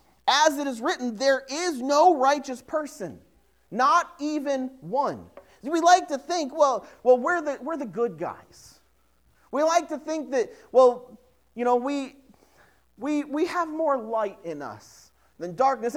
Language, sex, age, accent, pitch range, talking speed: English, male, 40-59, American, 230-305 Hz, 160 wpm